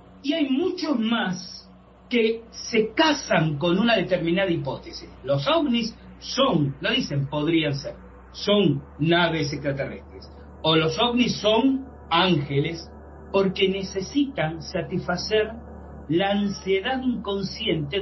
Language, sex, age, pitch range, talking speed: Spanish, male, 40-59, 155-225 Hz, 105 wpm